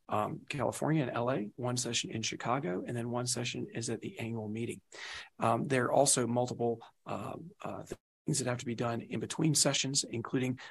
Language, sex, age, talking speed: English, male, 40-59, 190 wpm